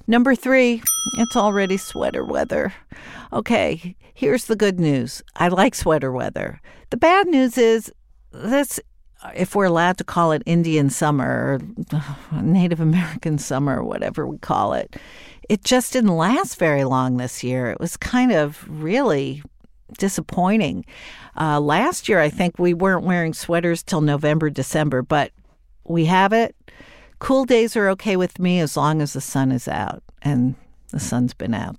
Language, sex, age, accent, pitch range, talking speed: English, female, 50-69, American, 150-210 Hz, 160 wpm